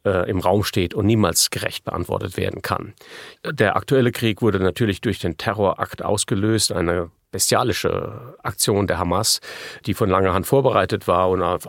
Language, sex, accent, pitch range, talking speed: German, male, German, 95-125 Hz, 160 wpm